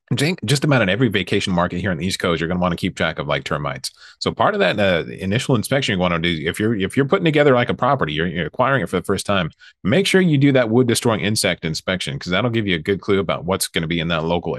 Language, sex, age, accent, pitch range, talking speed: English, male, 30-49, American, 90-135 Hz, 300 wpm